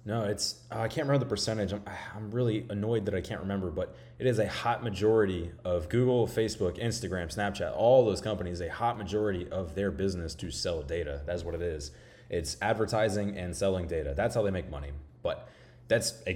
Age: 20-39